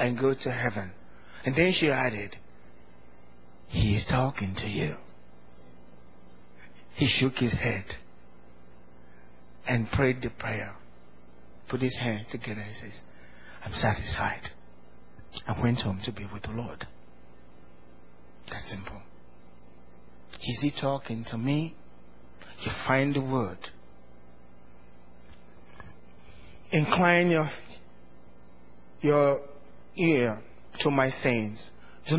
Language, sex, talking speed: English, male, 105 wpm